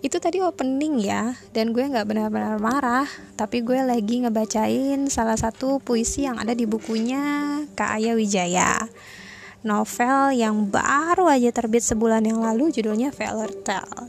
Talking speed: 140 wpm